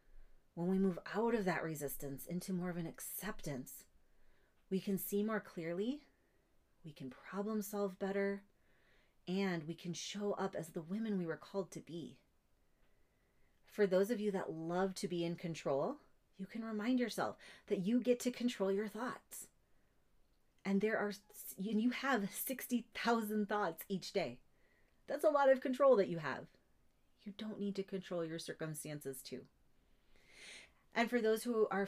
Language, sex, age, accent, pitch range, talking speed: English, female, 30-49, American, 175-215 Hz, 160 wpm